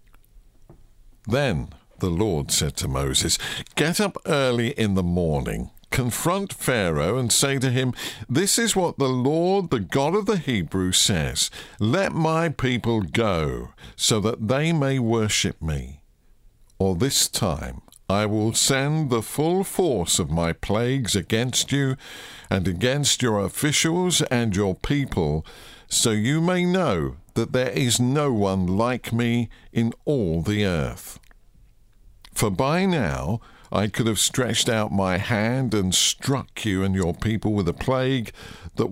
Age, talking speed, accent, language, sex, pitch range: 50-69, 145 wpm, British, English, male, 100-135 Hz